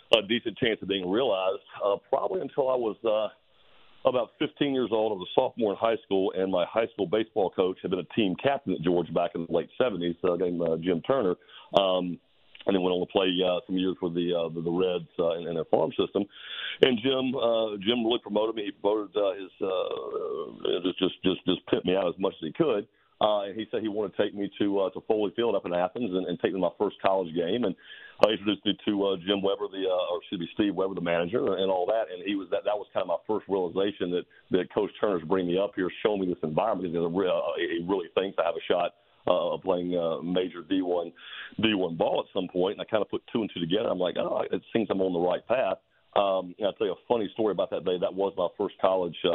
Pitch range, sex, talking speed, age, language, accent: 90-105 Hz, male, 265 wpm, 50-69, English, American